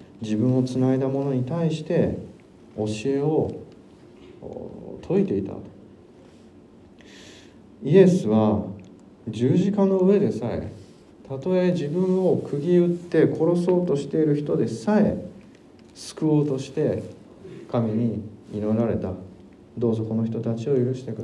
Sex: male